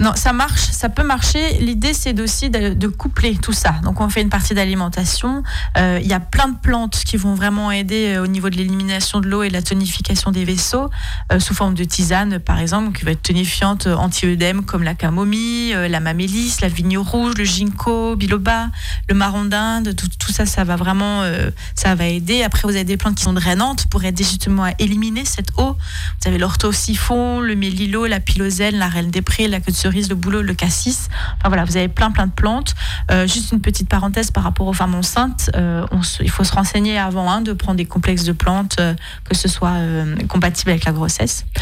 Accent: French